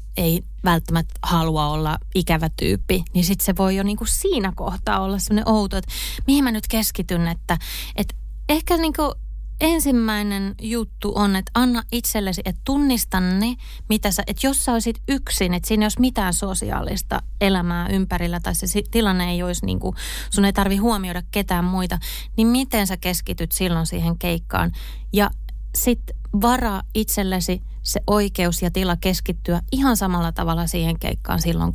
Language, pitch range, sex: Finnish, 170-205 Hz, female